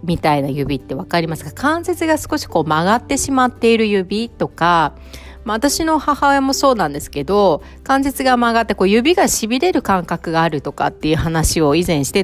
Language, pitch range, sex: Japanese, 160-230 Hz, female